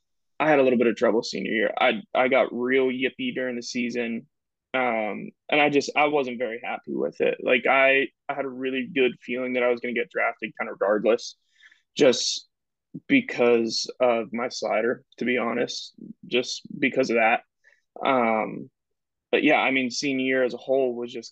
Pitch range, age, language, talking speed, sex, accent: 120-145 Hz, 20-39, English, 195 wpm, male, American